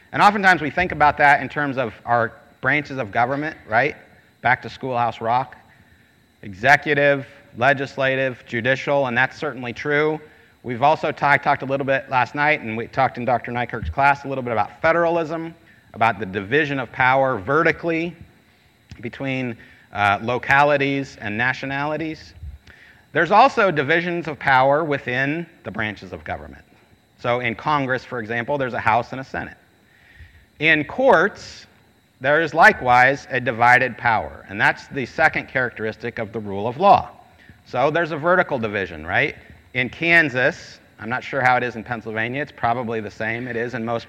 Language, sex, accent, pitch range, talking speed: English, male, American, 115-145 Hz, 160 wpm